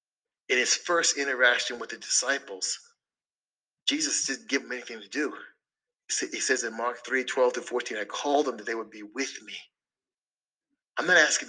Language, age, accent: English, 30-49, American